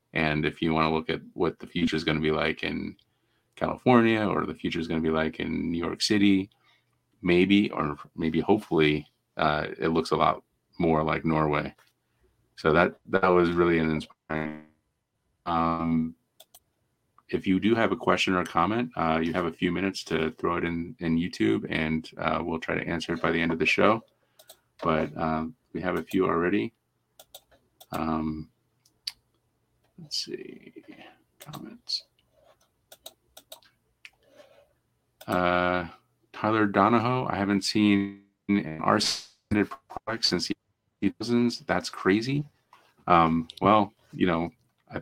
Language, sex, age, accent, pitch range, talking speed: English, male, 30-49, American, 80-95 Hz, 145 wpm